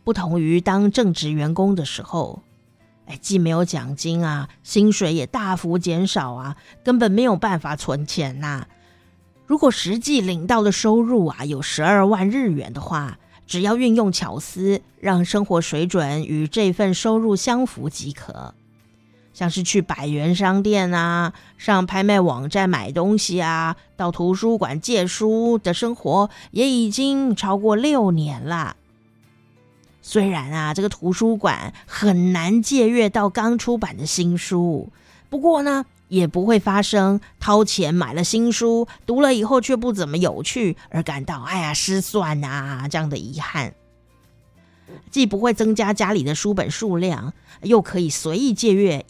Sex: female